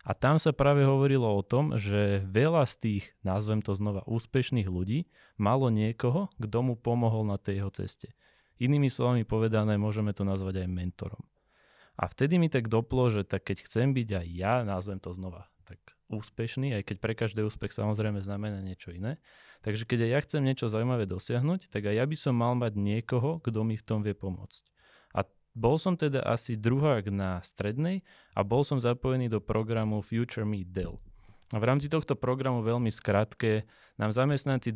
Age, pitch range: 20-39, 100-125 Hz